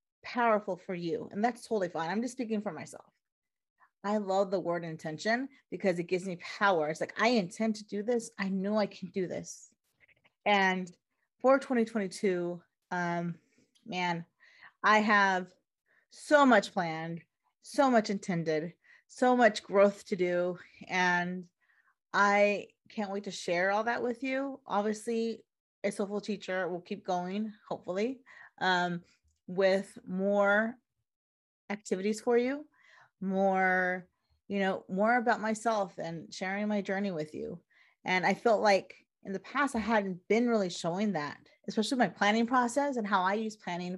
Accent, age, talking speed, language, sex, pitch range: American, 30-49, 150 wpm, English, female, 185-230 Hz